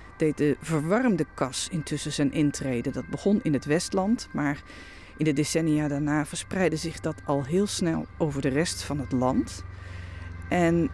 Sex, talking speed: female, 165 wpm